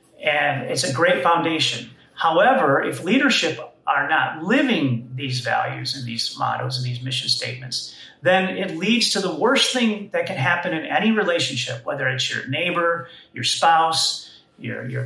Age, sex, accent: 40-59, male, American